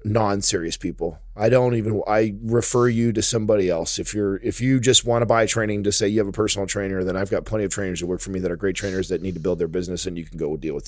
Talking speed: 300 wpm